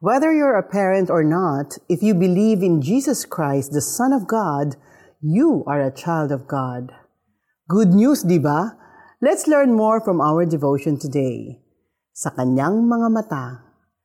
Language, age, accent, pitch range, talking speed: Filipino, 40-59, native, 155-240 Hz, 160 wpm